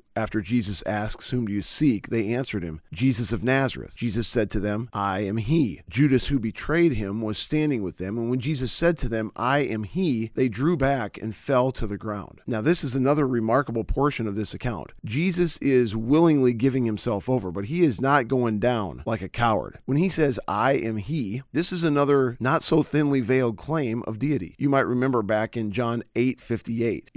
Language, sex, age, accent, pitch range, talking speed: English, male, 40-59, American, 110-140 Hz, 205 wpm